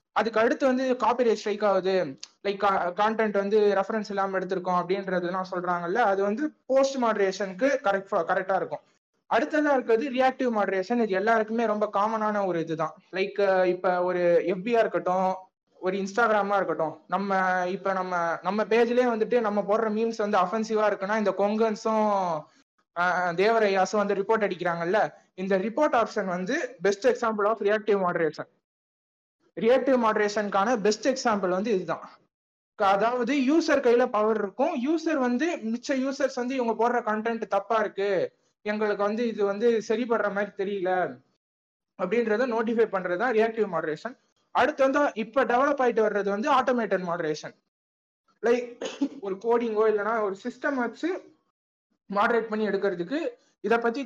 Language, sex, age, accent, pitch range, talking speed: Tamil, male, 20-39, native, 190-235 Hz, 135 wpm